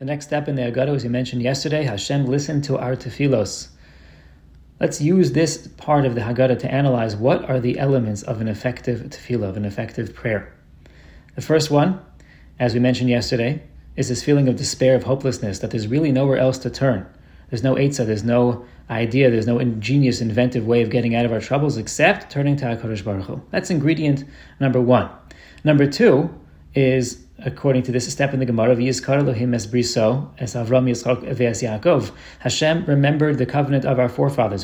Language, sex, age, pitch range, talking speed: English, male, 30-49, 115-135 Hz, 180 wpm